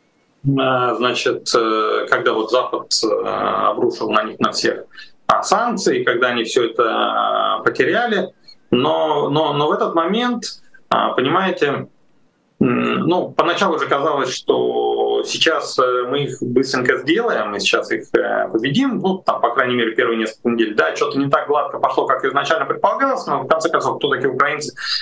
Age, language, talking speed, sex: 30-49, Russian, 145 wpm, male